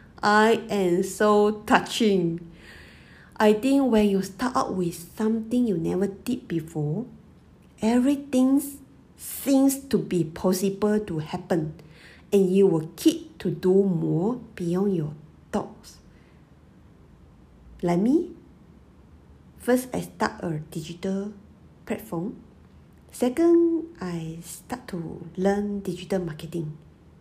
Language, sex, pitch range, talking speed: English, female, 170-245 Hz, 105 wpm